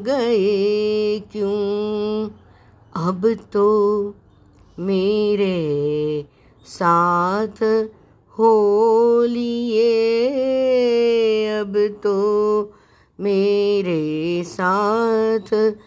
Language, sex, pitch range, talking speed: Hindi, female, 200-235 Hz, 40 wpm